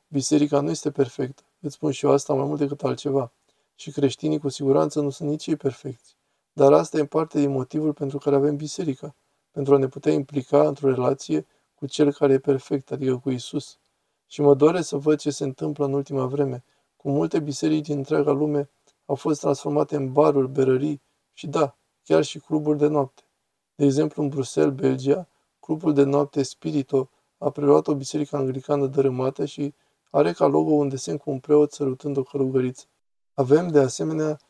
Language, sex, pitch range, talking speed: Romanian, male, 140-150 Hz, 185 wpm